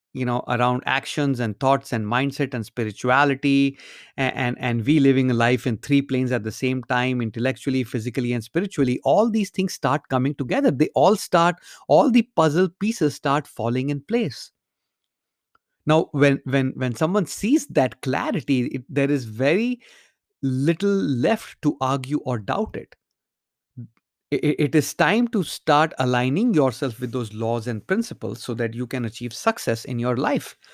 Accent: Indian